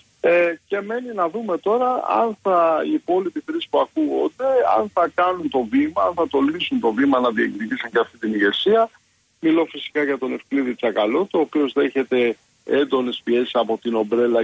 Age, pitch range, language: 50-69, 120-165 Hz, Greek